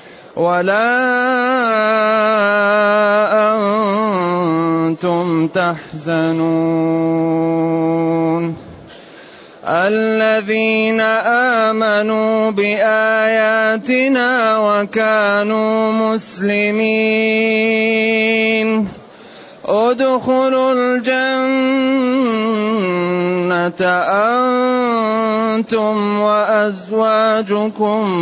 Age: 30-49